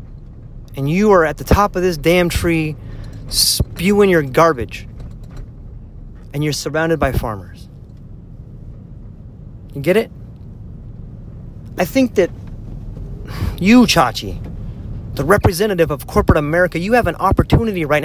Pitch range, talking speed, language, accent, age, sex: 110-160 Hz, 120 wpm, English, American, 30-49, male